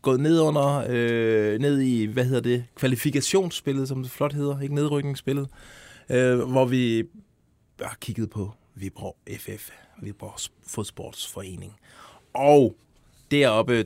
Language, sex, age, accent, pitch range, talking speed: Danish, male, 20-39, native, 110-135 Hz, 125 wpm